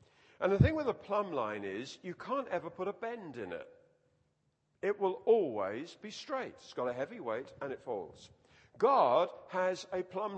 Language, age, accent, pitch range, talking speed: English, 50-69, British, 165-255 Hz, 190 wpm